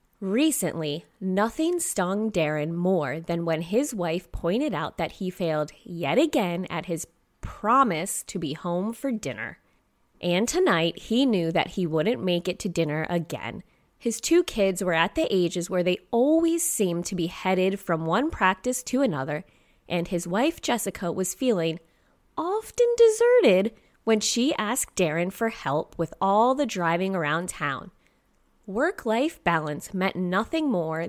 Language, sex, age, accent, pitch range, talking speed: English, female, 20-39, American, 170-240 Hz, 155 wpm